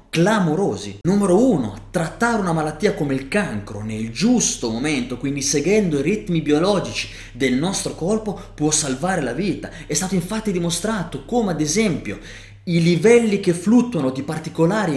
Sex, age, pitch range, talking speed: male, 20-39, 155-210 Hz, 150 wpm